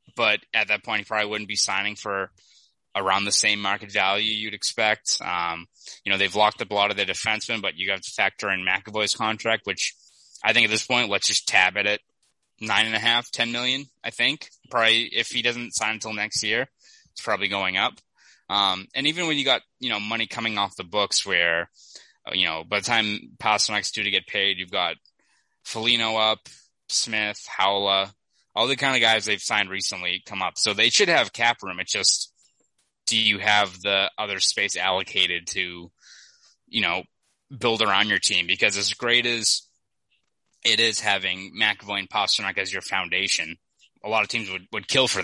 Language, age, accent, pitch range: English, 20-39, American, 100-115 Hz